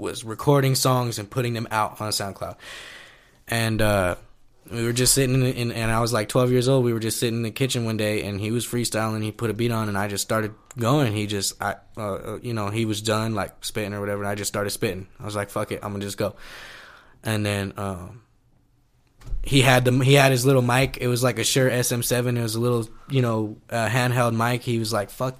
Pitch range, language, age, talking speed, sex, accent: 105-125 Hz, English, 10-29, 250 wpm, male, American